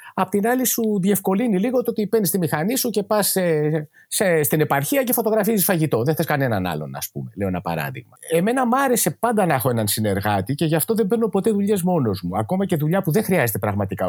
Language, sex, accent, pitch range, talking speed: Greek, male, native, 115-190 Hz, 230 wpm